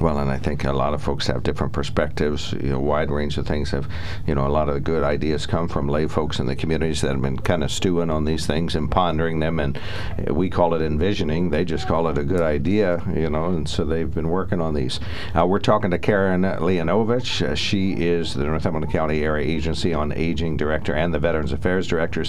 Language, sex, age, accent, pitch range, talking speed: English, male, 60-79, American, 75-90 Hz, 240 wpm